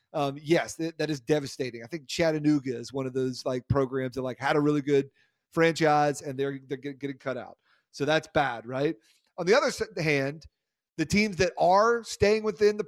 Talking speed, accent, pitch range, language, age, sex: 200 wpm, American, 140-170 Hz, English, 30-49, male